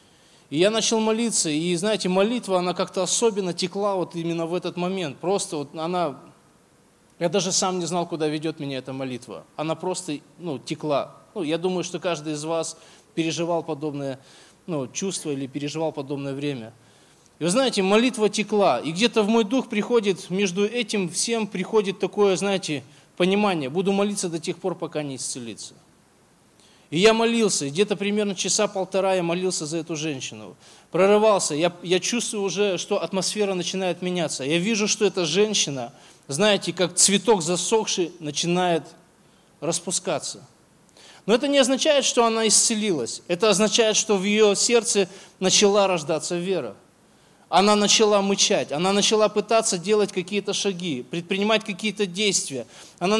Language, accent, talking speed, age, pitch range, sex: Russian, native, 150 wpm, 20-39, 165-210 Hz, male